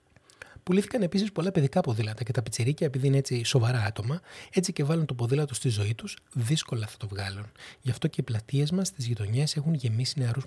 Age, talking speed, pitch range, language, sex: 30-49, 205 wpm, 120-155 Hz, Greek, male